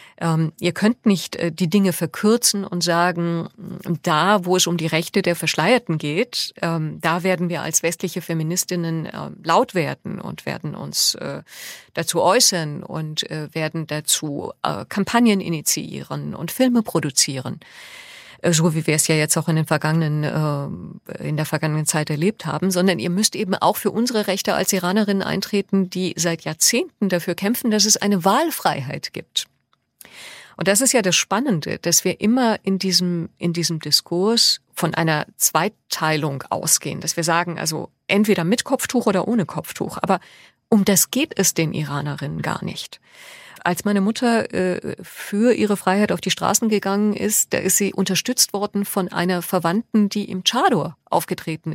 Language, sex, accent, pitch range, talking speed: German, female, German, 165-205 Hz, 170 wpm